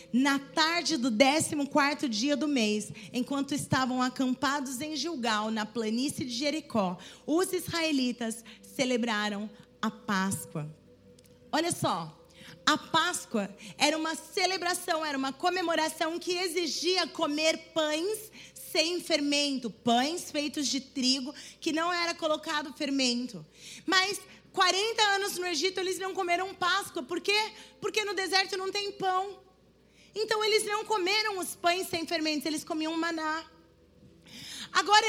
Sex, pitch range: female, 255-355 Hz